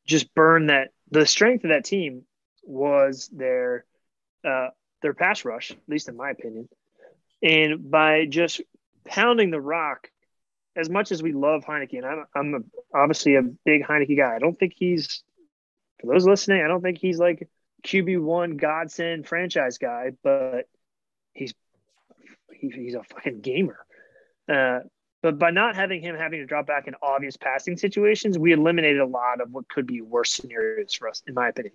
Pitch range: 140-185 Hz